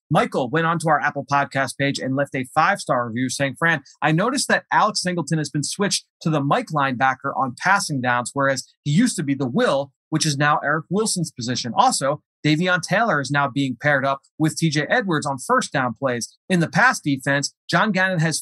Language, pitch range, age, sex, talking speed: English, 145-175 Hz, 30-49, male, 210 wpm